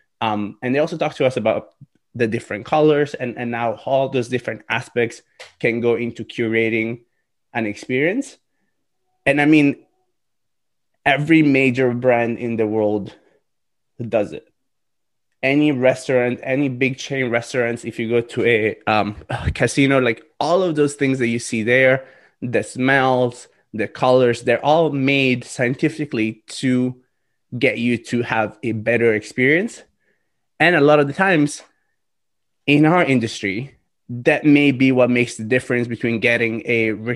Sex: male